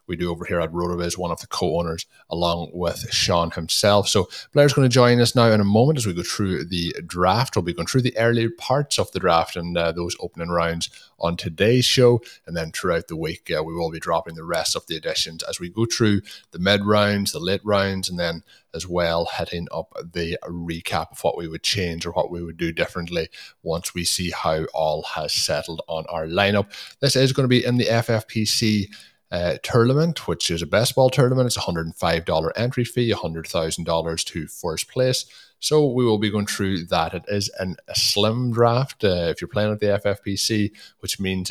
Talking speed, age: 225 wpm, 30-49